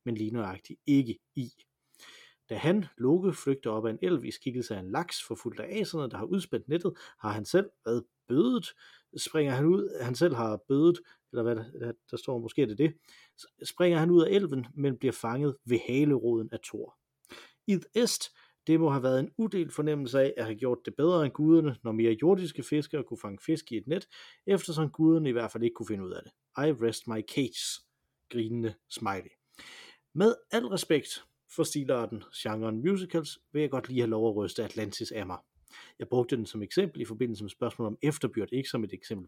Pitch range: 115-160 Hz